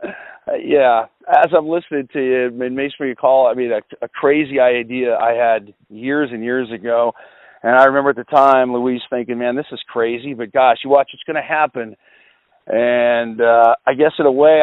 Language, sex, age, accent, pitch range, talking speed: English, male, 40-59, American, 125-180 Hz, 195 wpm